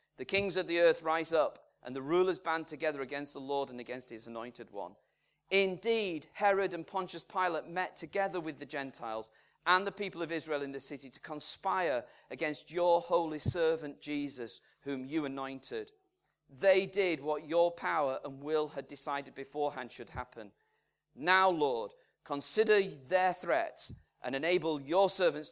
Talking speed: 160 wpm